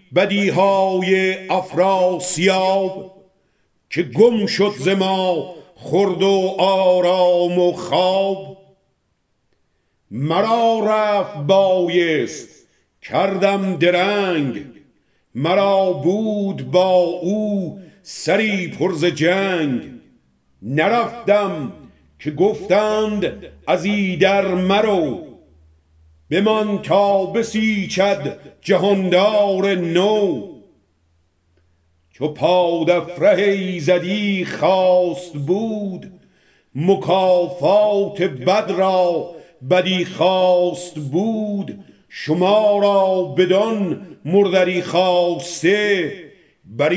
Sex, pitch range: male, 175-200 Hz